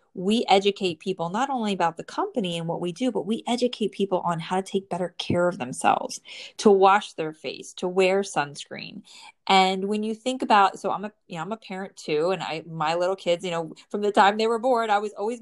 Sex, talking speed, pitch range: female, 235 wpm, 185-230 Hz